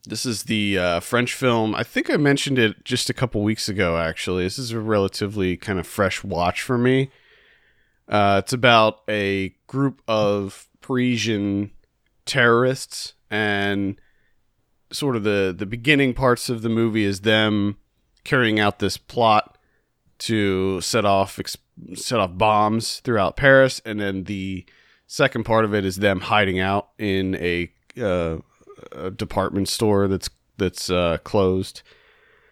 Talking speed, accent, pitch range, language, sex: 145 wpm, American, 100-130 Hz, English, male